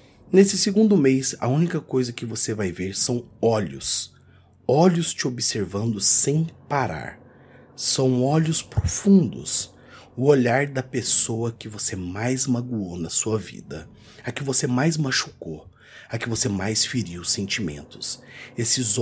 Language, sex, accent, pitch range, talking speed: Portuguese, male, Brazilian, 100-135 Hz, 140 wpm